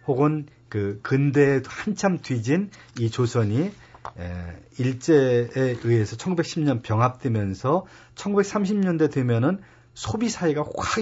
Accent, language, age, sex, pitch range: native, Korean, 40-59, male, 105-145 Hz